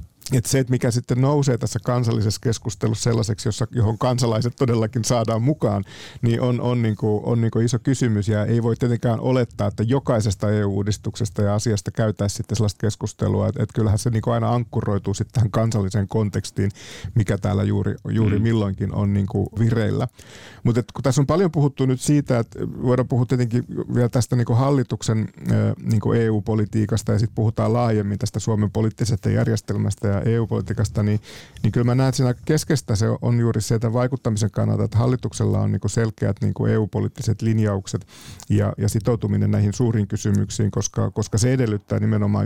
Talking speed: 160 wpm